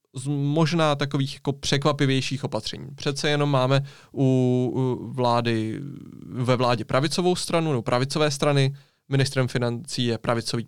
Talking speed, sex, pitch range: 125 wpm, male, 125-145 Hz